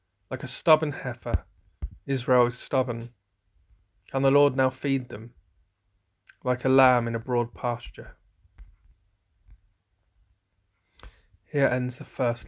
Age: 30-49